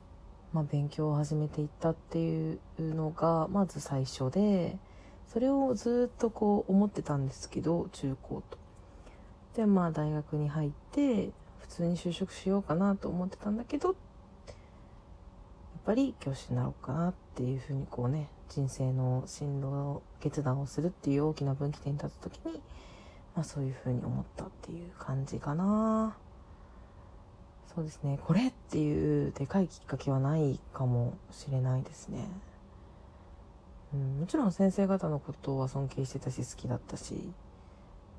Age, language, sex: 40-59, Japanese, female